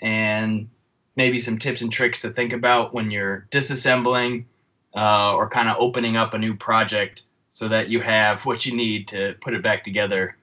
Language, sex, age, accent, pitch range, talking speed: English, male, 20-39, American, 105-125 Hz, 190 wpm